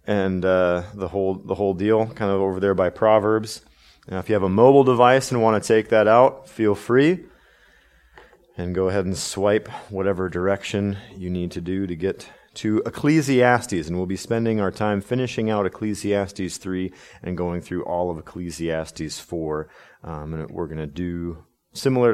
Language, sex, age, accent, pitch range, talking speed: English, male, 30-49, American, 85-110 Hz, 180 wpm